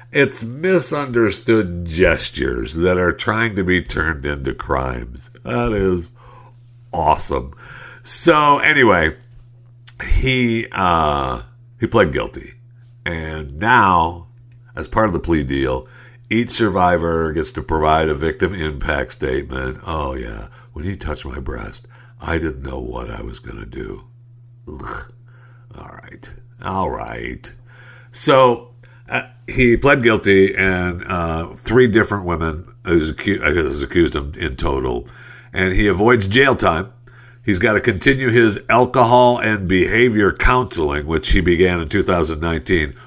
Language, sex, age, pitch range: English, male, 60-79, 85-120 Hz